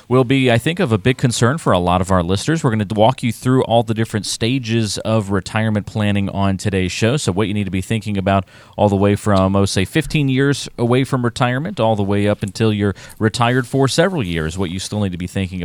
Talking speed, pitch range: 255 wpm, 95-125 Hz